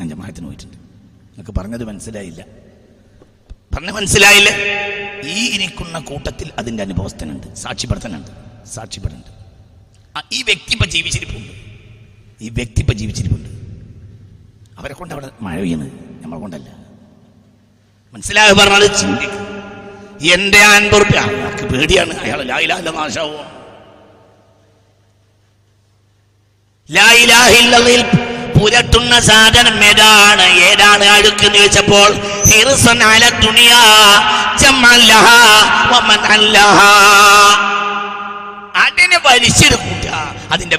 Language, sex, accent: Malayalam, male, native